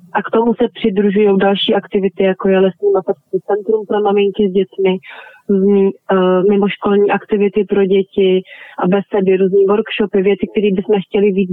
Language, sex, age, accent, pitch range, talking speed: Czech, female, 20-39, native, 195-220 Hz, 150 wpm